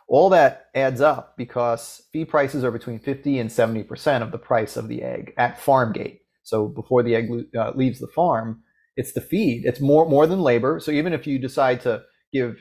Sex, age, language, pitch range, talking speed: male, 30-49, English, 110-135 Hz, 210 wpm